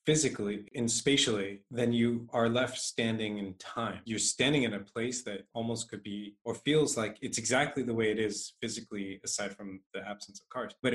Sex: male